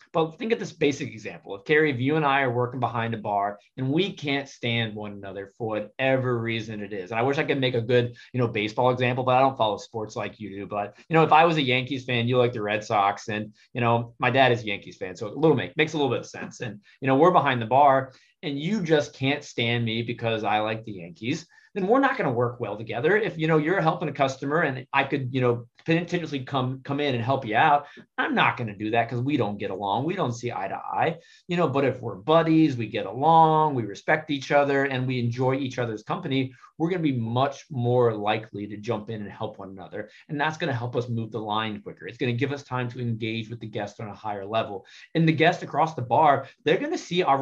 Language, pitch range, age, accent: English, 115-150 Hz, 30-49, American